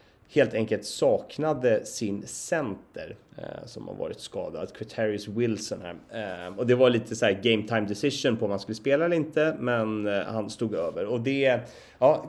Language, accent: Swedish, native